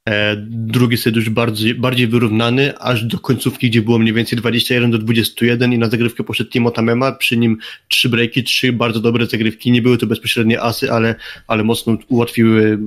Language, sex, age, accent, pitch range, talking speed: Polish, male, 20-39, native, 115-130 Hz, 185 wpm